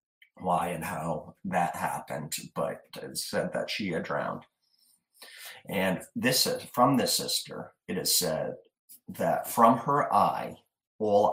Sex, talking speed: male, 140 wpm